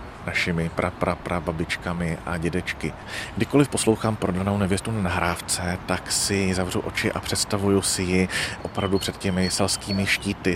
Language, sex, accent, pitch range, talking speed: Czech, male, native, 90-105 Hz, 135 wpm